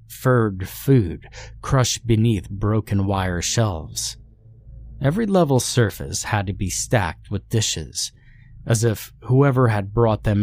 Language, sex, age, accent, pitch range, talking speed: English, male, 30-49, American, 95-120 Hz, 125 wpm